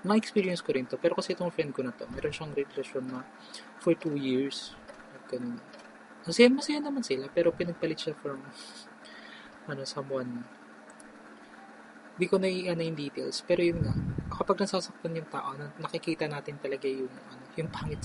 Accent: native